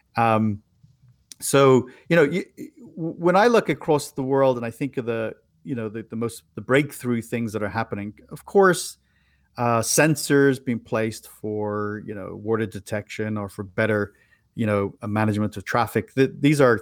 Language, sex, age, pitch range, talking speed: English, male, 40-59, 105-130 Hz, 175 wpm